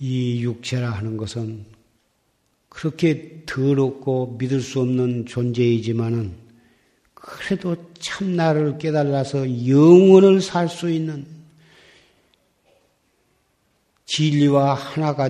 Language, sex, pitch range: Korean, male, 120-145 Hz